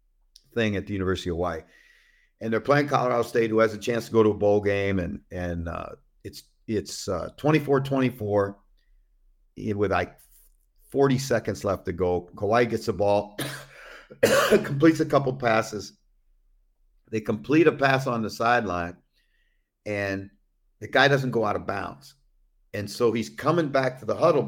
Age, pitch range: 50-69, 100-130 Hz